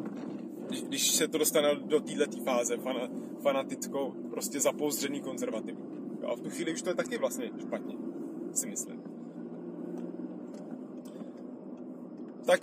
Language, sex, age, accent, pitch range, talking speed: Czech, male, 30-49, native, 165-275 Hz, 115 wpm